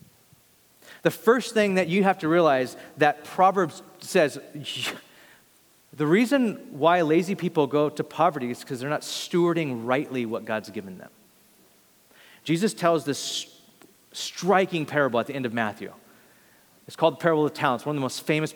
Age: 30-49